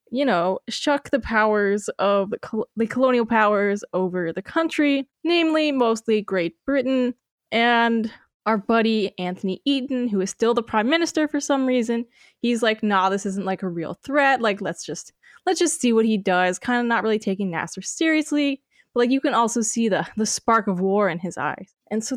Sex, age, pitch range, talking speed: female, 10-29, 205-265 Hz, 200 wpm